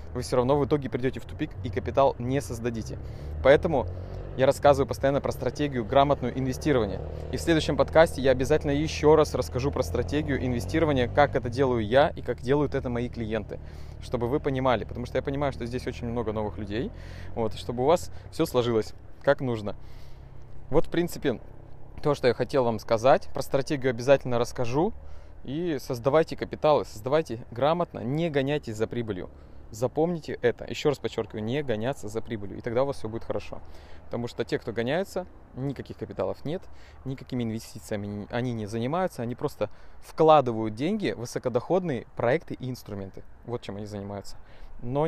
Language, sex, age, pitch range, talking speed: Russian, male, 20-39, 110-140 Hz, 170 wpm